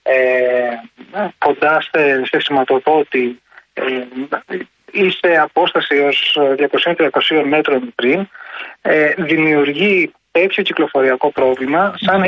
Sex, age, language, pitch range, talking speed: male, 30-49, Greek, 140-190 Hz, 85 wpm